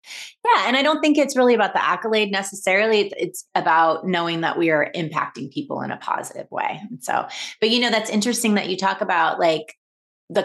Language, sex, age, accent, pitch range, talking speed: English, female, 30-49, American, 170-230 Hz, 205 wpm